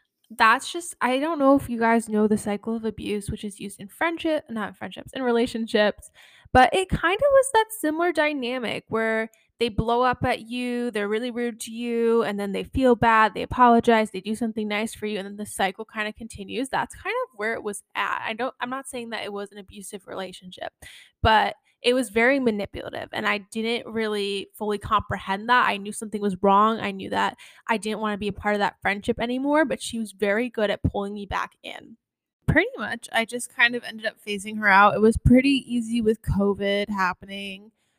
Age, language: 10-29, English